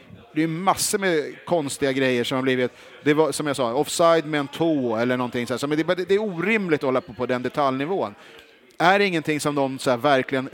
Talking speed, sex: 205 wpm, male